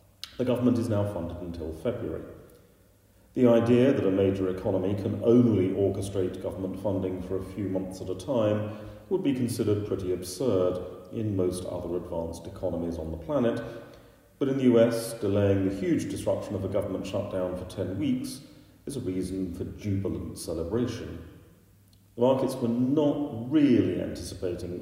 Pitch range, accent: 95-110 Hz, British